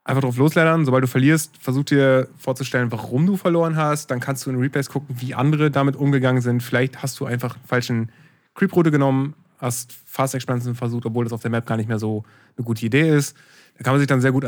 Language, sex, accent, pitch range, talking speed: German, male, German, 120-140 Hz, 230 wpm